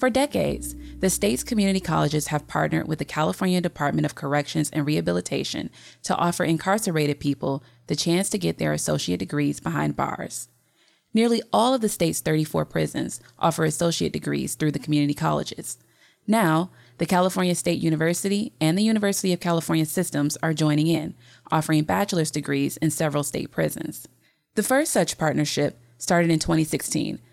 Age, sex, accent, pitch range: 20-39, female, American, 145-190 Hz